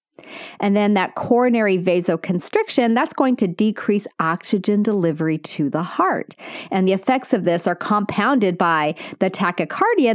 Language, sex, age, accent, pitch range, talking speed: English, female, 40-59, American, 180-245 Hz, 140 wpm